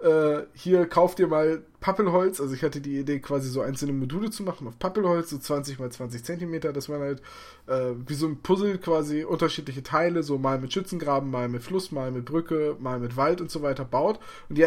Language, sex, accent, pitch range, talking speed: German, male, German, 135-170 Hz, 215 wpm